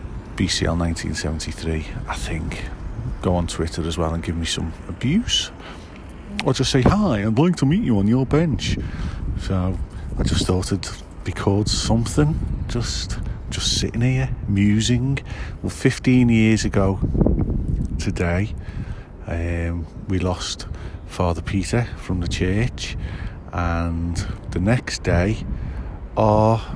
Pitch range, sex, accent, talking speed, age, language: 85-105 Hz, male, British, 130 wpm, 40-59, English